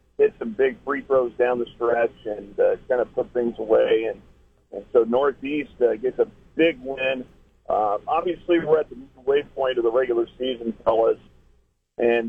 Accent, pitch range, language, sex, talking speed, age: American, 120-145 Hz, English, male, 175 wpm, 50-69